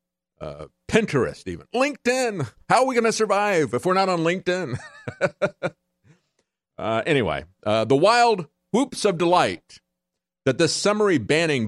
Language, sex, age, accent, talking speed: English, male, 50-69, American, 140 wpm